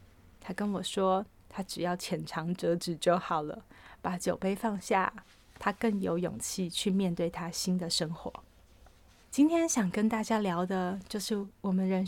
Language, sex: Chinese, female